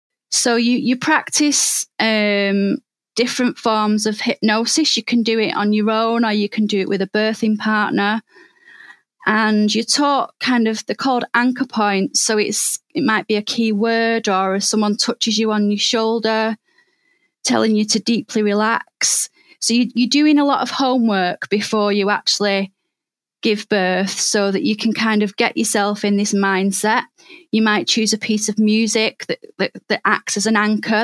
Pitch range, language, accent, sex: 205-240 Hz, English, British, female